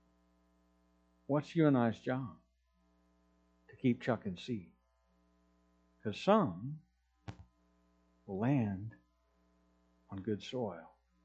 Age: 50-69